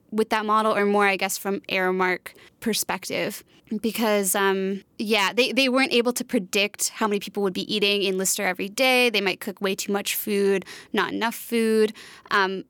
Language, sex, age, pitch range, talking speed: English, female, 20-39, 195-220 Hz, 190 wpm